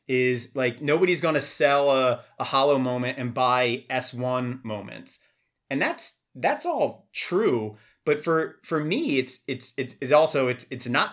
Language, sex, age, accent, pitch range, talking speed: English, male, 30-49, American, 125-170 Hz, 160 wpm